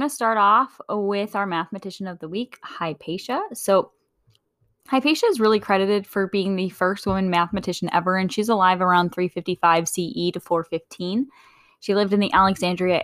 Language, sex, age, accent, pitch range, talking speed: English, female, 10-29, American, 175-220 Hz, 160 wpm